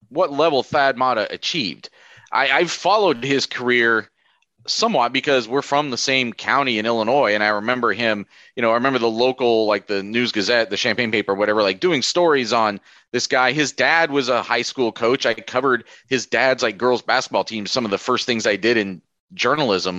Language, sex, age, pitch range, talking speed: English, male, 30-49, 110-145 Hz, 200 wpm